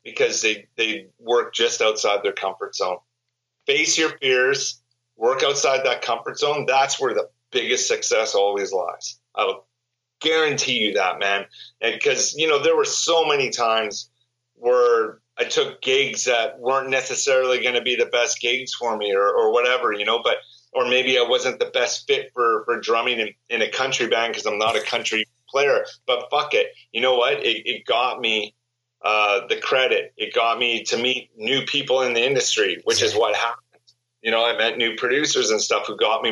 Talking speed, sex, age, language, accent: 195 wpm, male, 30-49, English, American